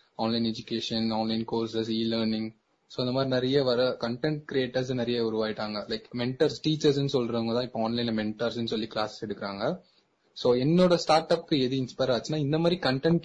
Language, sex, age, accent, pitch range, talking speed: Tamil, male, 20-39, native, 120-150 Hz, 100 wpm